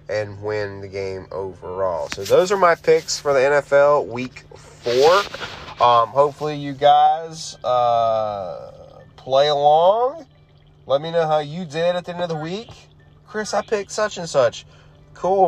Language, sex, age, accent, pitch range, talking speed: English, male, 30-49, American, 115-180 Hz, 160 wpm